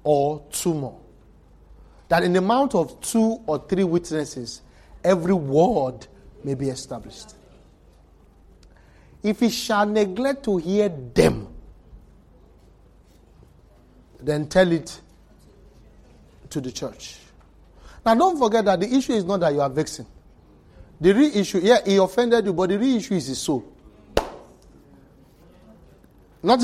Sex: male